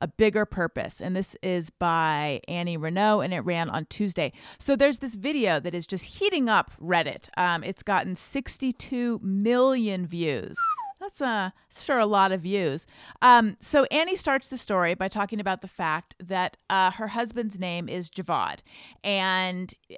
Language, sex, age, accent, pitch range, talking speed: English, female, 30-49, American, 180-230 Hz, 170 wpm